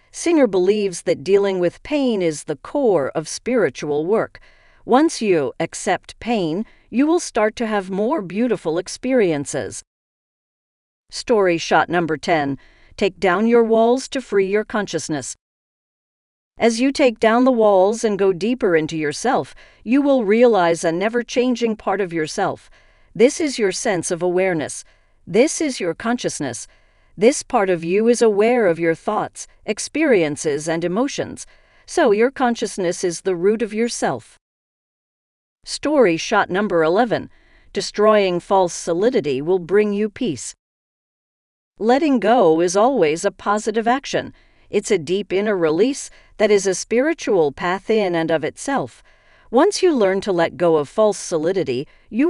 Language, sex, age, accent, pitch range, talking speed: English, female, 50-69, American, 175-240 Hz, 145 wpm